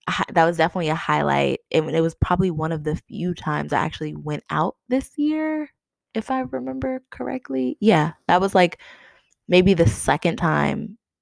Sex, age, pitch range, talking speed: female, 20-39, 150-180 Hz, 170 wpm